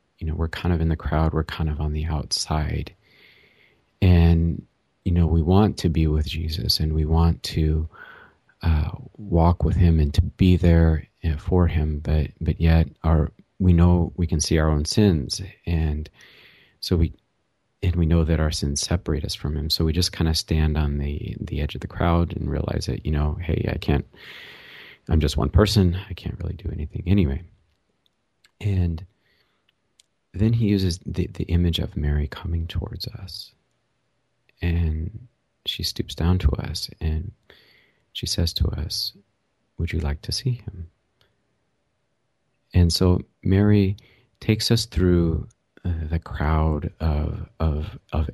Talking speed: 165 wpm